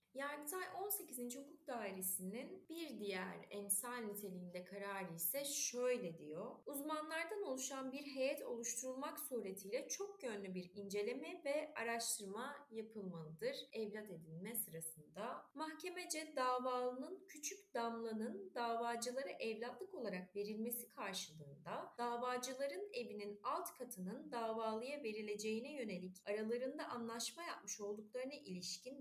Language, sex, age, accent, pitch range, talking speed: Turkish, female, 30-49, native, 210-275 Hz, 105 wpm